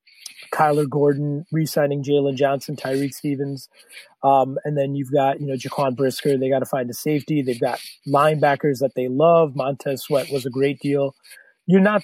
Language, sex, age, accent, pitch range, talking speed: English, male, 30-49, American, 140-160 Hz, 185 wpm